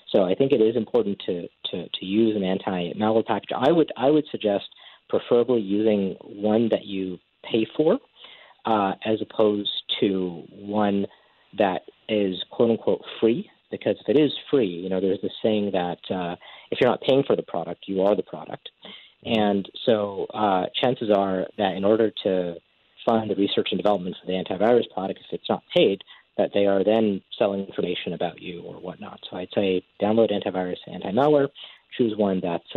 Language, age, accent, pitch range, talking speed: English, 40-59, American, 95-115 Hz, 185 wpm